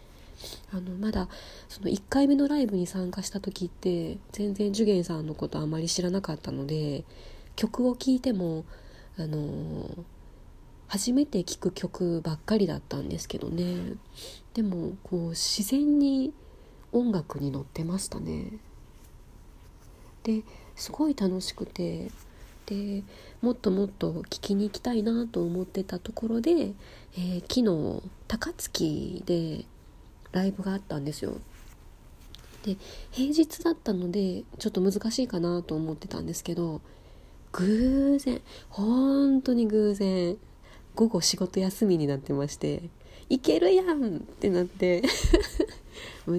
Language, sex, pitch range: Japanese, female, 175-225 Hz